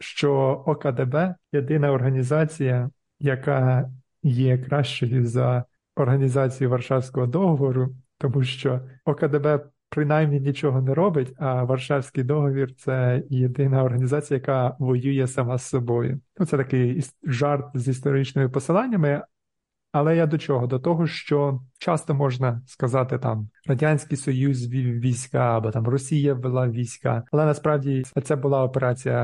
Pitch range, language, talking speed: 125-145 Hz, Ukrainian, 125 wpm